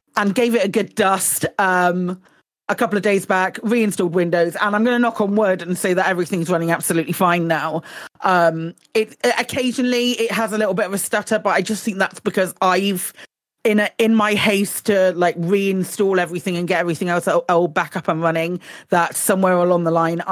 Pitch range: 170-230 Hz